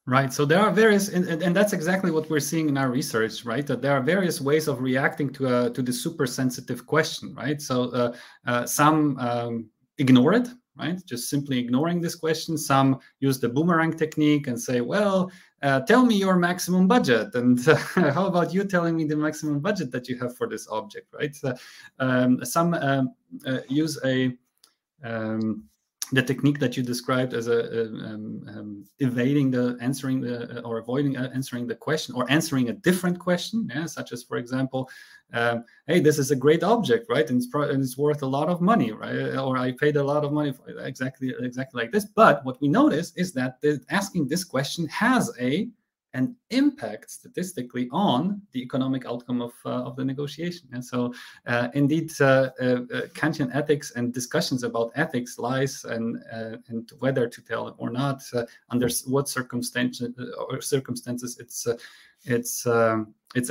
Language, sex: English, male